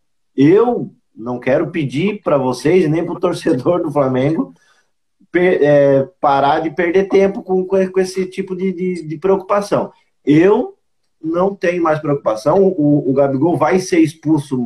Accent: Brazilian